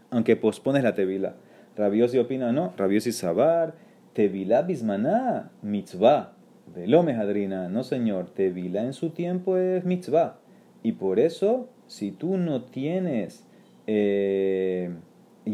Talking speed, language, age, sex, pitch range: 125 wpm, Spanish, 30-49, male, 110-180 Hz